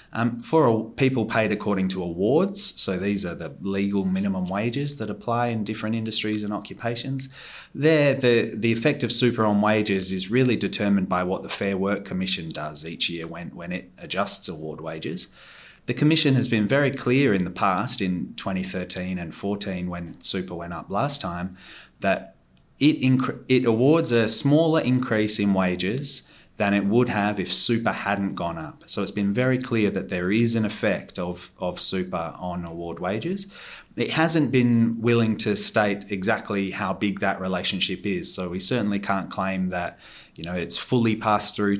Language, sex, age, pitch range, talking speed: English, male, 30-49, 95-120 Hz, 180 wpm